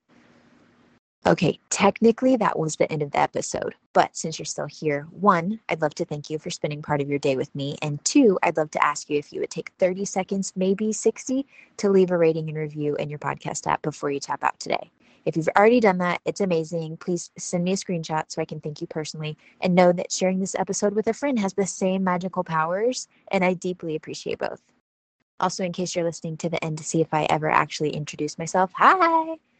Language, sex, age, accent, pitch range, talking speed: English, female, 20-39, American, 155-195 Hz, 225 wpm